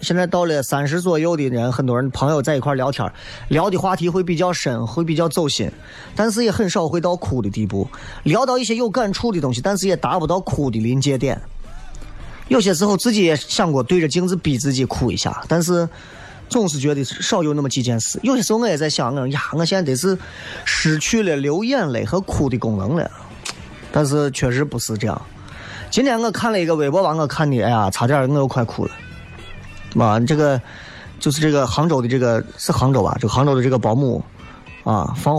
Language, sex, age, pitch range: Chinese, male, 20-39, 120-165 Hz